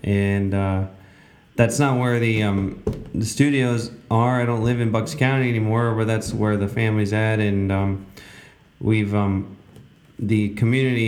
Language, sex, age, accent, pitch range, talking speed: English, male, 20-39, American, 100-120 Hz, 155 wpm